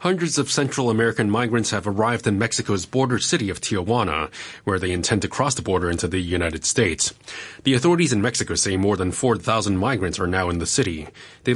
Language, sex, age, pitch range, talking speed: English, male, 30-49, 100-145 Hz, 200 wpm